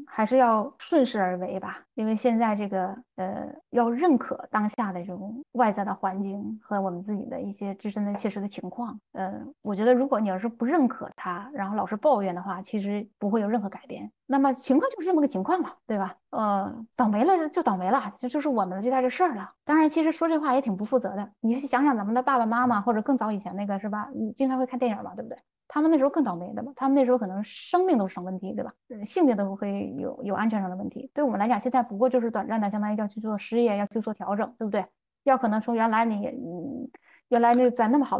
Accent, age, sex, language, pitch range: native, 20-39, female, Chinese, 205-255 Hz